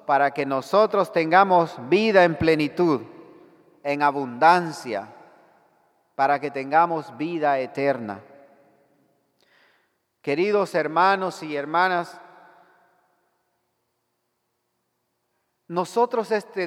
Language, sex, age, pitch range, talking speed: English, male, 40-59, 160-210 Hz, 70 wpm